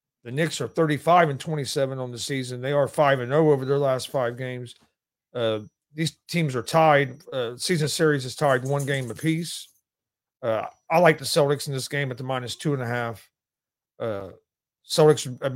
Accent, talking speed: American, 195 wpm